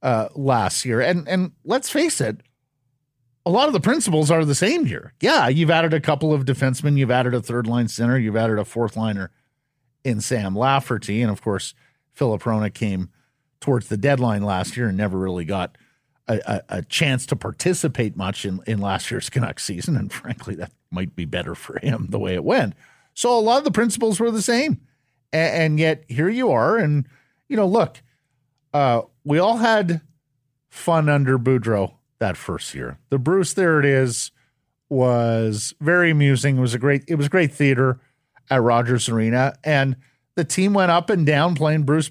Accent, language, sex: American, English, male